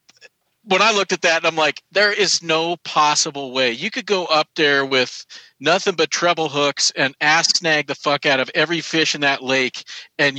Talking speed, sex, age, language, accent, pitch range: 200 wpm, male, 40-59, English, American, 120-150 Hz